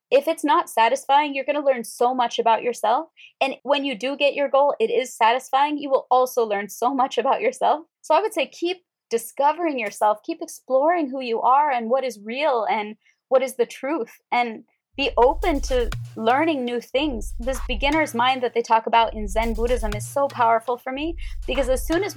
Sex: female